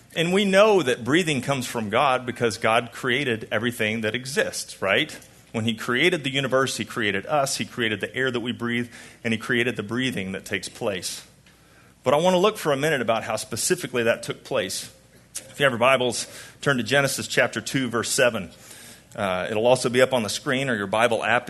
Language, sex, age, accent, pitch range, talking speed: English, male, 40-59, American, 110-135 Hz, 210 wpm